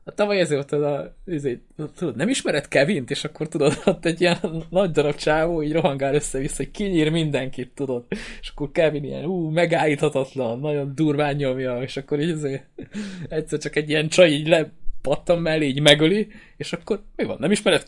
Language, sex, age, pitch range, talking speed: Hungarian, male, 20-39, 125-155 Hz, 175 wpm